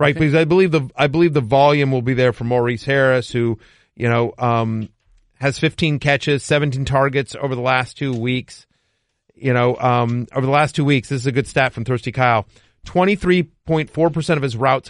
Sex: male